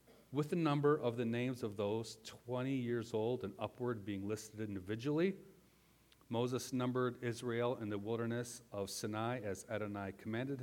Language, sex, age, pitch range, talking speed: English, male, 40-59, 105-140 Hz, 150 wpm